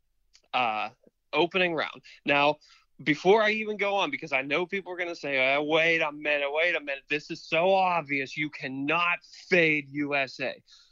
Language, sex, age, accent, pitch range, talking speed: English, male, 20-39, American, 135-180 Hz, 170 wpm